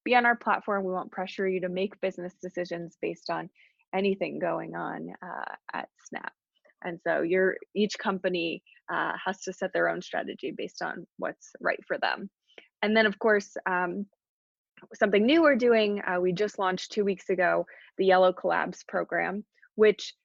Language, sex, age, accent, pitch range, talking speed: English, female, 20-39, American, 180-215 Hz, 170 wpm